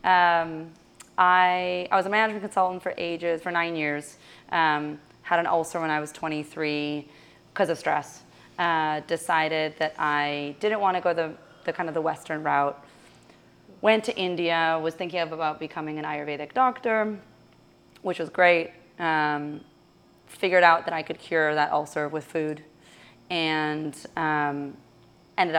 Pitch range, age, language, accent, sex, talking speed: 150-170 Hz, 30-49, English, American, female, 155 wpm